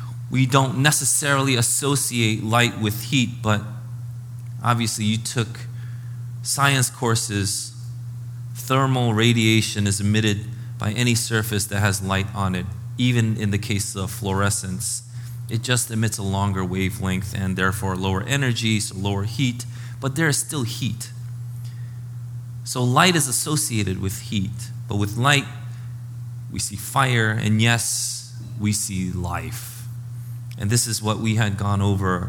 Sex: male